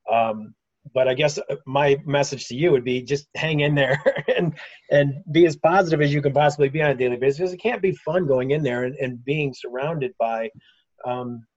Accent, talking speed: American, 215 wpm